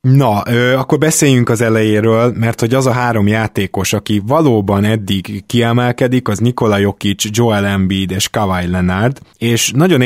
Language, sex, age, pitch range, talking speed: Hungarian, male, 20-39, 105-125 Hz, 150 wpm